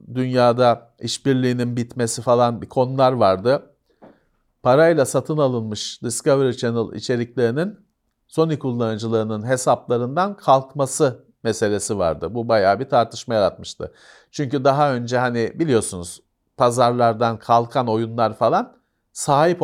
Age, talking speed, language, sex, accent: 50-69, 105 wpm, Turkish, male, native